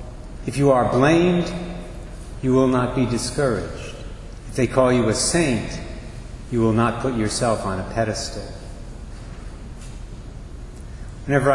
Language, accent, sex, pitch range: English, American, male, 105-130 Hz